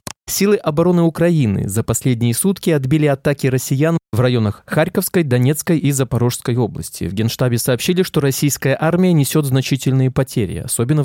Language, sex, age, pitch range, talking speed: Russian, male, 20-39, 115-155 Hz, 140 wpm